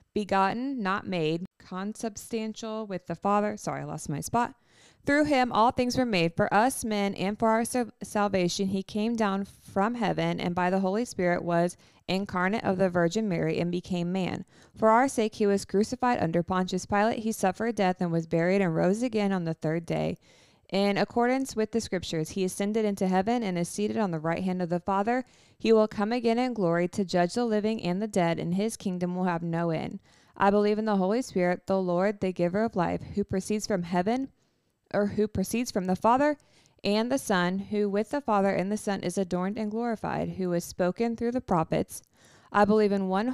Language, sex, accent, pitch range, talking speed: English, female, American, 180-225 Hz, 210 wpm